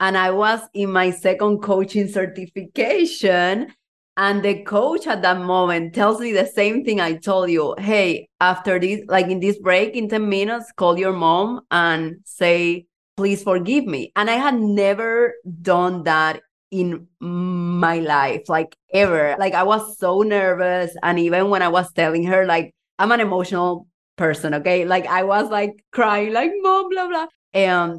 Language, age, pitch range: English, 30-49, 175-215 Hz